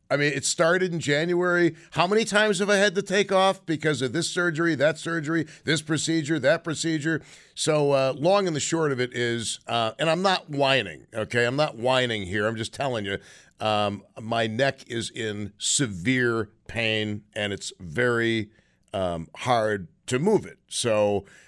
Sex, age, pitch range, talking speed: male, 50-69, 110-150 Hz, 175 wpm